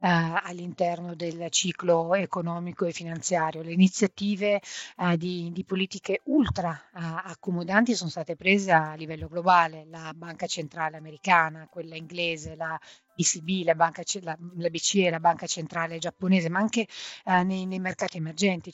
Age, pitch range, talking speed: 30-49, 170-195 Hz, 145 wpm